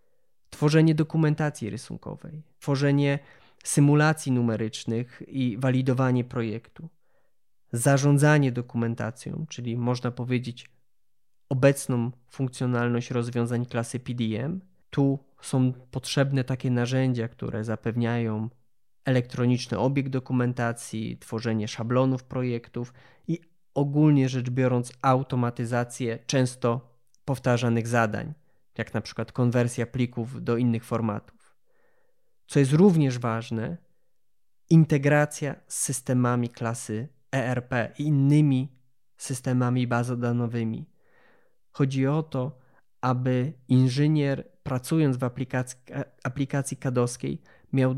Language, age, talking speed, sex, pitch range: Polish, 20-39, 90 wpm, male, 120-145 Hz